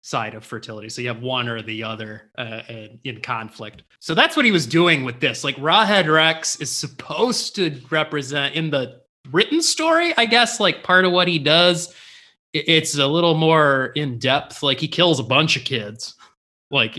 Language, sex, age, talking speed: English, male, 20-39, 190 wpm